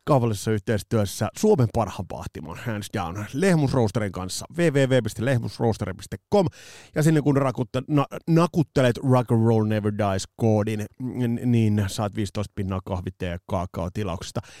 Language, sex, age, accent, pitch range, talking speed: Finnish, male, 30-49, native, 100-125 Hz, 115 wpm